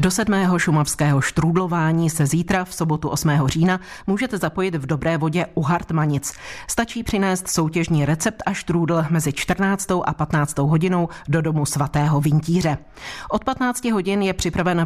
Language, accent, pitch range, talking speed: Czech, native, 155-190 Hz, 150 wpm